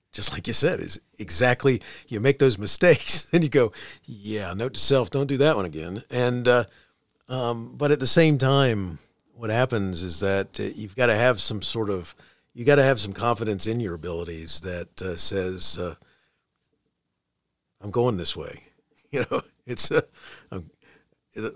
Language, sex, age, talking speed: English, male, 40-59, 175 wpm